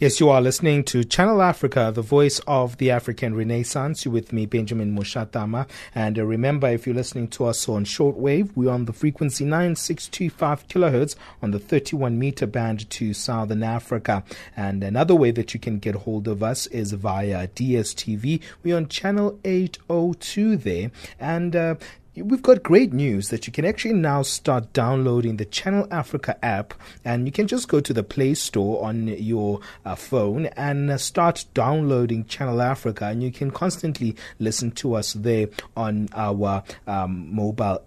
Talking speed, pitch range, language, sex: 170 wpm, 110-150 Hz, English, male